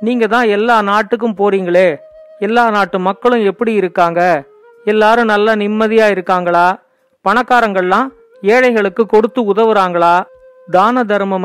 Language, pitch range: Tamil, 200-260 Hz